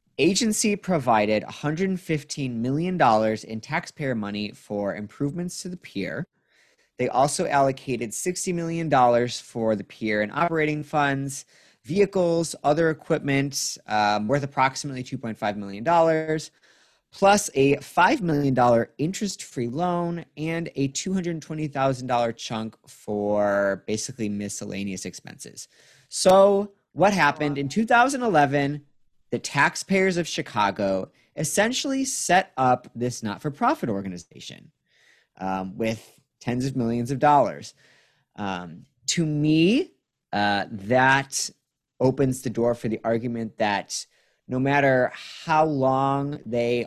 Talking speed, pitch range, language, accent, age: 110 wpm, 110-165 Hz, English, American, 30-49